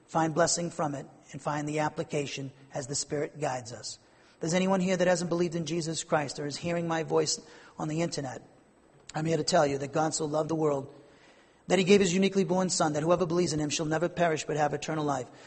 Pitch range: 145-170 Hz